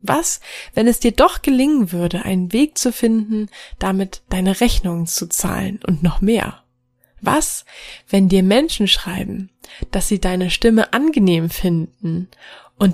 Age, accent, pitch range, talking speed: 20-39, German, 180-210 Hz, 145 wpm